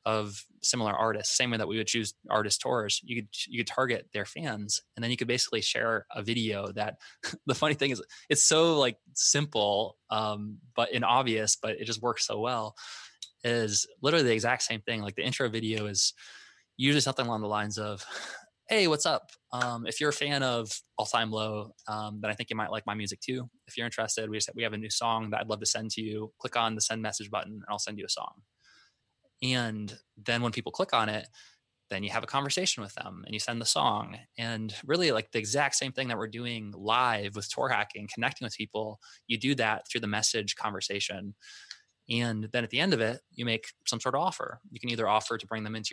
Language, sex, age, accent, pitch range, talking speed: English, male, 20-39, American, 105-125 Hz, 230 wpm